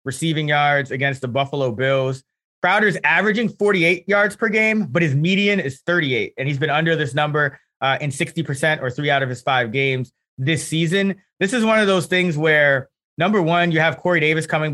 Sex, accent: male, American